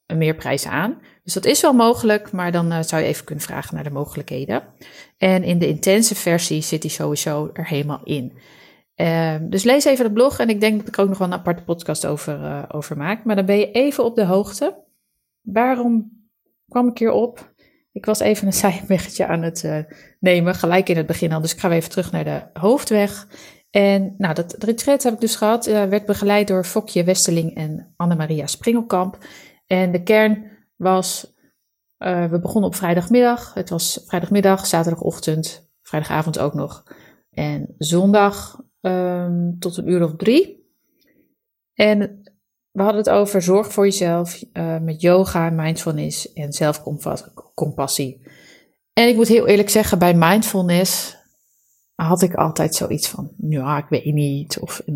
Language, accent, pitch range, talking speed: Dutch, Dutch, 160-215 Hz, 180 wpm